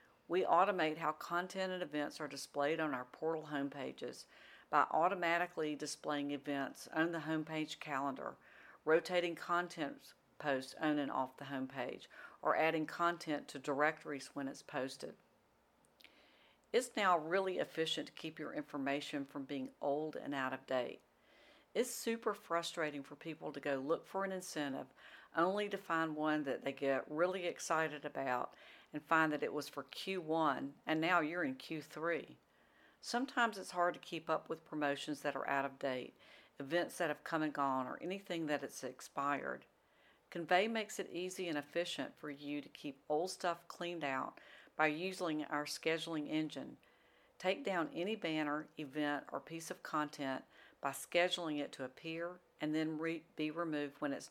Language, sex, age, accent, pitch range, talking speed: English, female, 50-69, American, 145-170 Hz, 160 wpm